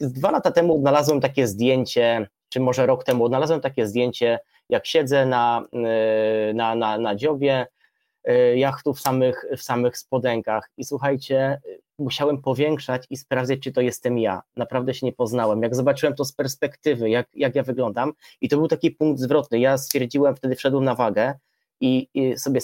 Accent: native